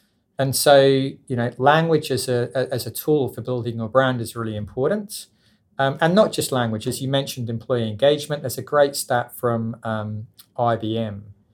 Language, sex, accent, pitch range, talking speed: English, male, British, 110-130 Hz, 175 wpm